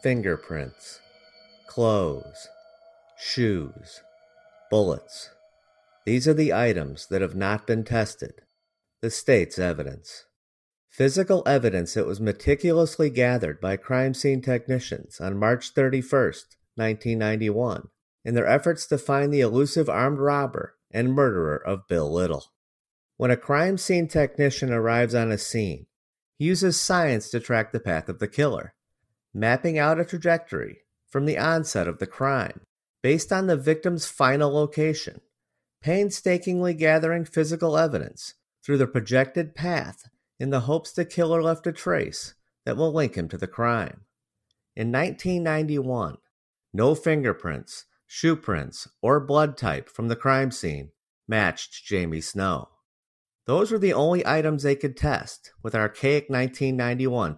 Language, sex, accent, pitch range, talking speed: English, male, American, 110-160 Hz, 135 wpm